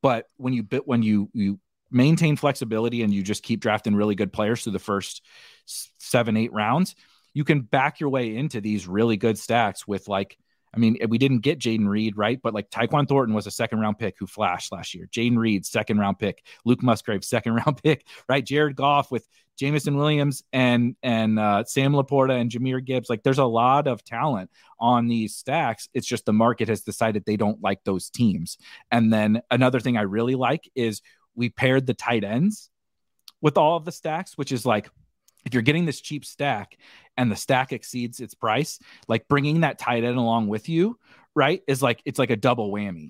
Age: 30-49